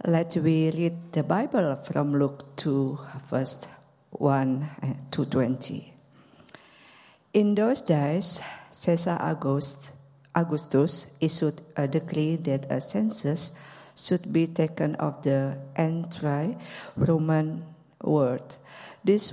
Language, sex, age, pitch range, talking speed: English, female, 50-69, 140-165 Hz, 100 wpm